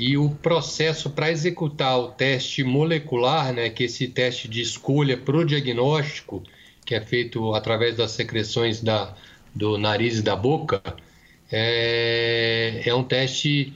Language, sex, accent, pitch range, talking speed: Portuguese, male, Brazilian, 115-145 Hz, 145 wpm